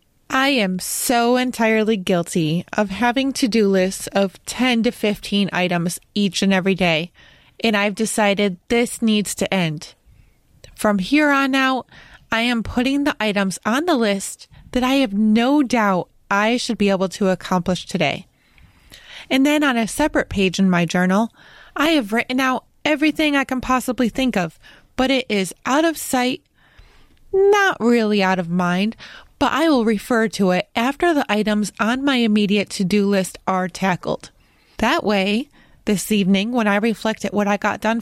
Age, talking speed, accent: 20-39, 170 wpm, American